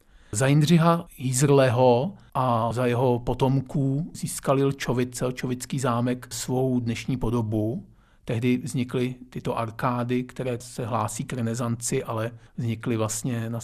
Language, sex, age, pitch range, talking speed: Czech, male, 50-69, 115-140 Hz, 120 wpm